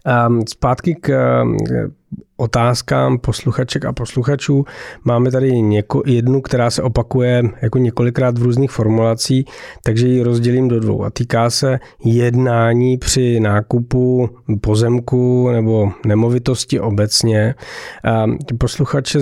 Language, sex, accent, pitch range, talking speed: Czech, male, native, 115-125 Hz, 110 wpm